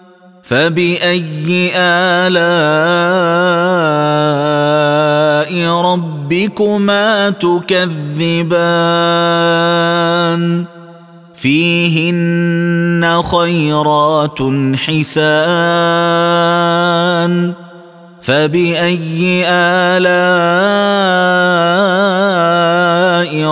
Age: 30-49